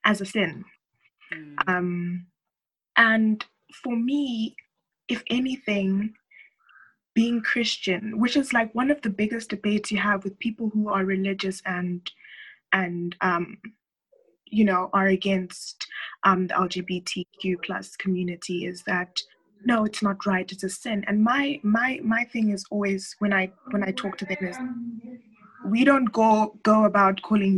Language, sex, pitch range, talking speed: English, female, 185-225 Hz, 150 wpm